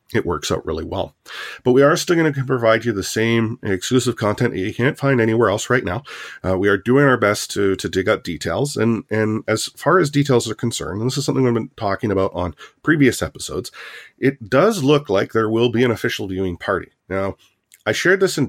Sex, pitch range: male, 100-130 Hz